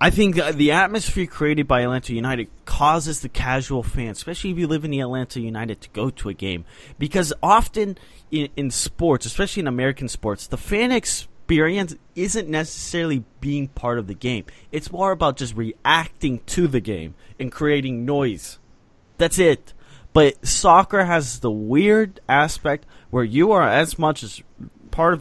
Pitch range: 115-155 Hz